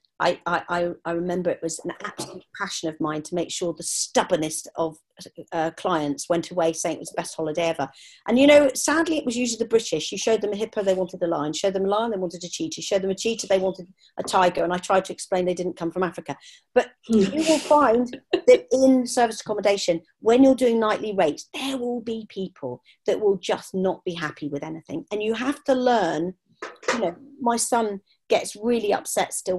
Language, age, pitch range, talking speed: English, 40-59, 175-235 Hz, 225 wpm